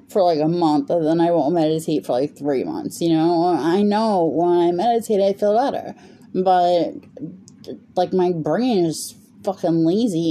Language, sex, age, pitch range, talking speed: English, female, 20-39, 160-205 Hz, 175 wpm